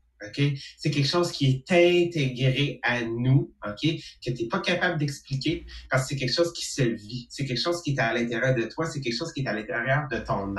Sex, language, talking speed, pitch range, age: male, English, 230 wpm, 125-170 Hz, 30-49